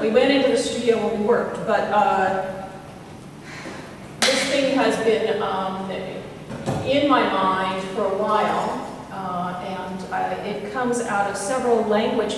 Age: 40-59